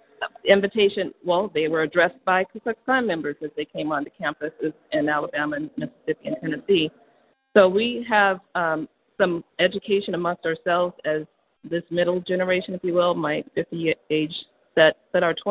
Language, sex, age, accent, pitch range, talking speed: English, female, 50-69, American, 160-190 Hz, 170 wpm